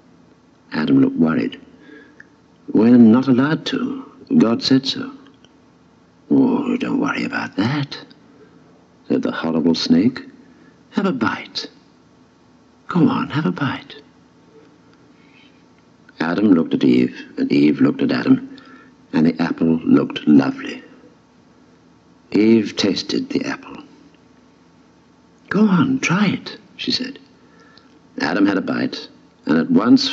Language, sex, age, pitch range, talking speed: English, male, 60-79, 250-275 Hz, 115 wpm